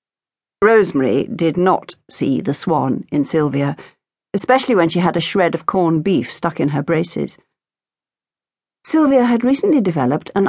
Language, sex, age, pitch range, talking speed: English, female, 50-69, 155-220 Hz, 150 wpm